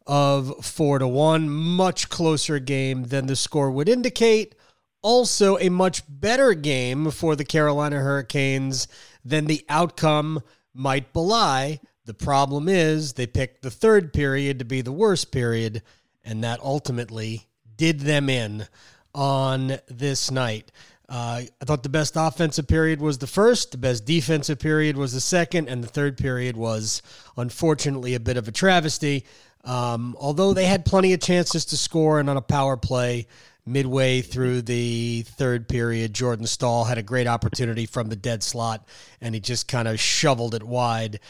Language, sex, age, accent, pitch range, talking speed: English, male, 30-49, American, 120-155 Hz, 165 wpm